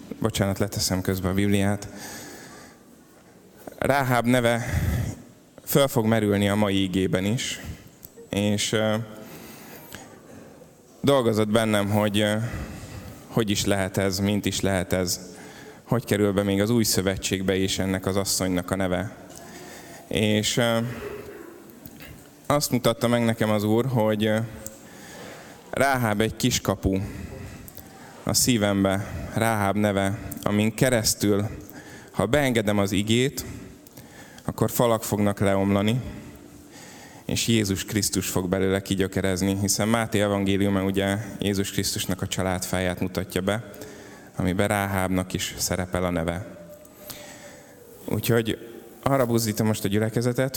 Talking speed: 110 wpm